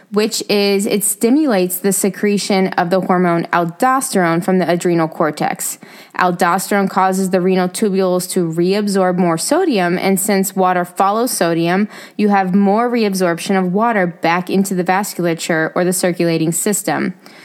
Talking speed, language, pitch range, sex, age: 145 wpm, English, 180-215 Hz, female, 20-39